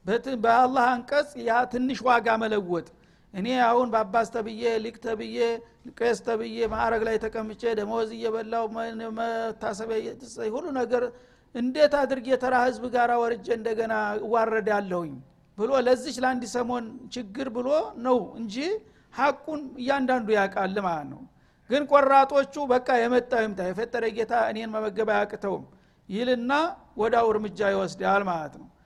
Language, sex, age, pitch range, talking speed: Amharic, male, 60-79, 215-245 Hz, 105 wpm